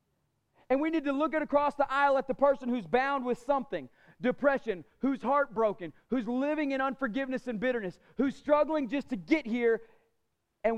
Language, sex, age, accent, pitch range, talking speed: English, male, 40-59, American, 190-255 Hz, 175 wpm